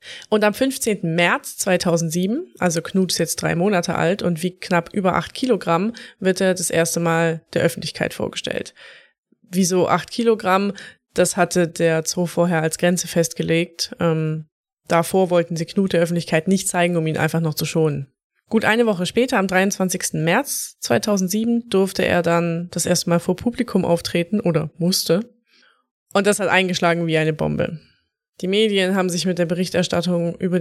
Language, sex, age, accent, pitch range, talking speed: German, female, 20-39, German, 170-200 Hz, 170 wpm